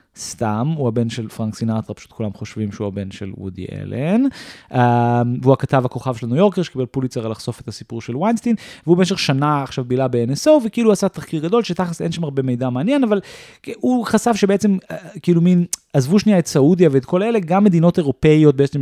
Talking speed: 200 wpm